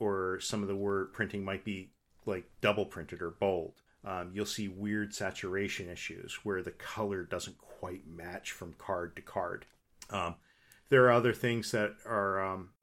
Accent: American